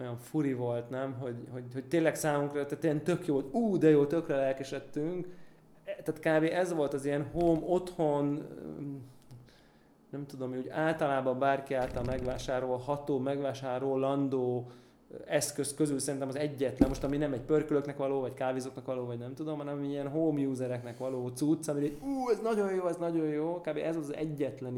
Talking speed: 175 wpm